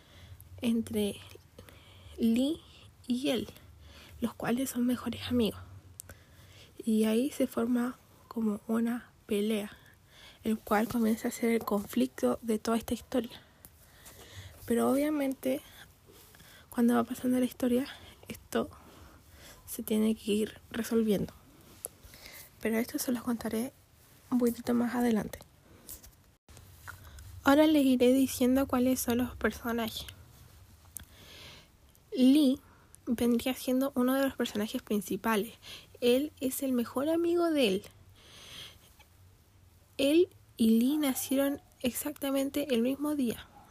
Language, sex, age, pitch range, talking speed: Spanish, female, 20-39, 205-255 Hz, 110 wpm